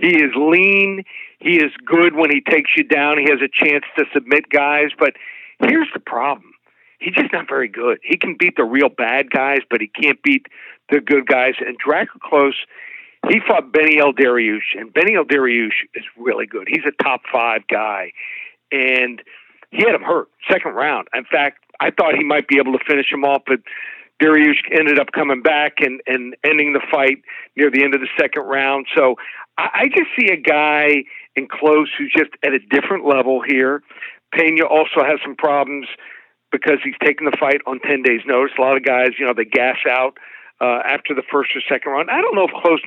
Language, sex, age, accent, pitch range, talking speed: English, male, 50-69, American, 135-160 Hz, 205 wpm